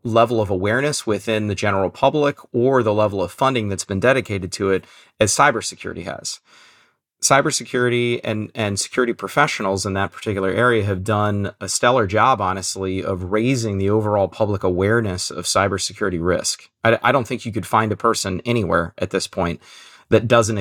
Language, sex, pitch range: English, male, 95-120 Hz